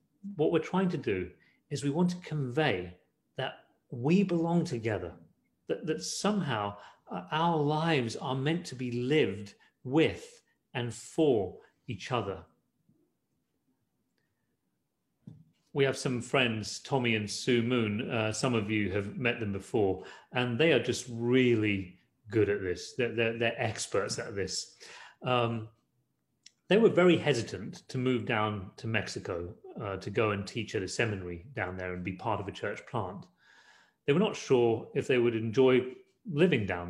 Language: English